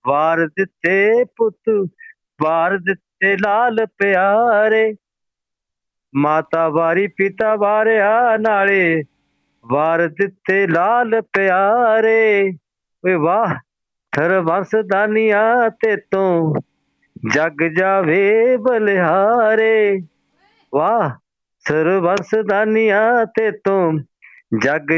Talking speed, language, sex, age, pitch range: 70 wpm, Punjabi, male, 50-69, 185-230 Hz